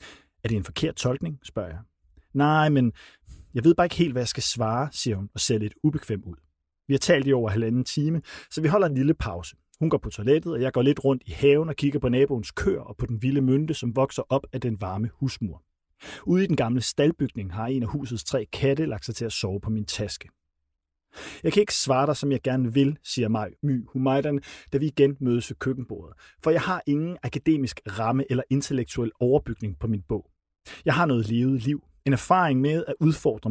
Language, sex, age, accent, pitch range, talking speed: Danish, male, 30-49, native, 110-150 Hz, 225 wpm